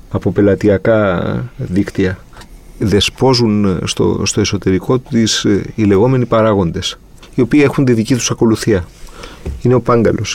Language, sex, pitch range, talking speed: Greek, male, 100-125 Hz, 120 wpm